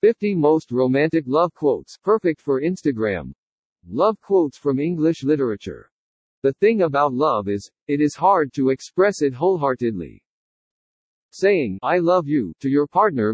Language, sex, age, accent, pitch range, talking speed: English, male, 50-69, American, 135-175 Hz, 145 wpm